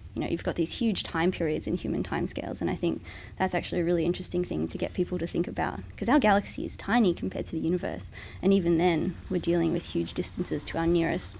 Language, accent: English, Australian